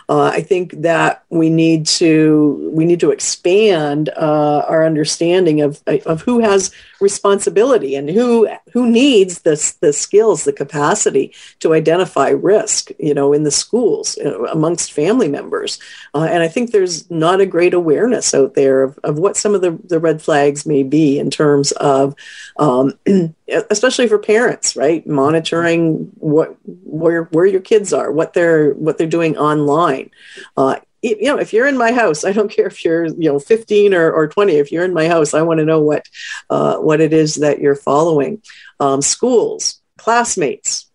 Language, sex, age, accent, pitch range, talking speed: English, female, 50-69, American, 145-220 Hz, 180 wpm